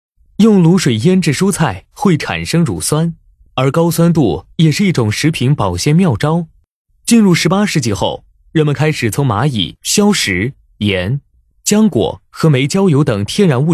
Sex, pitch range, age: male, 120-180 Hz, 20-39